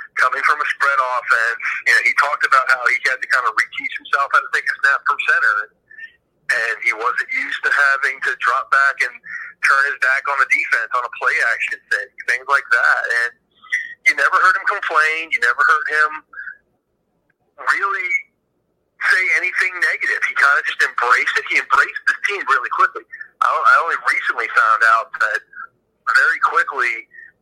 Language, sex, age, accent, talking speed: English, male, 40-59, American, 180 wpm